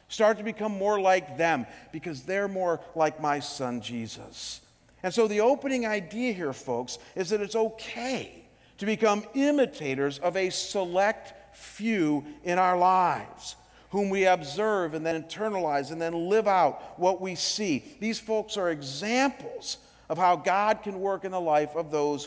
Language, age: English, 50-69